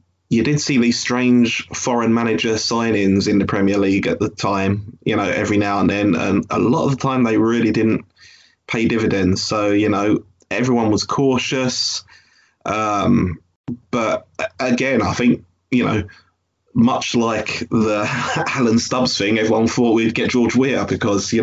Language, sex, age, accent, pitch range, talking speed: English, male, 20-39, British, 105-120 Hz, 165 wpm